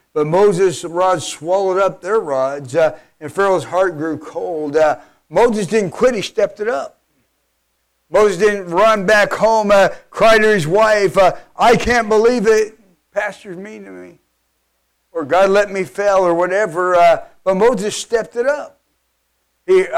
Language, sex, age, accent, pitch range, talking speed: English, male, 50-69, American, 185-220 Hz, 160 wpm